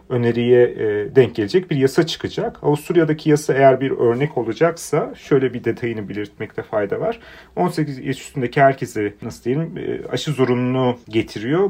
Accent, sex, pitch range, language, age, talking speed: native, male, 120-155 Hz, Turkish, 40-59, 140 wpm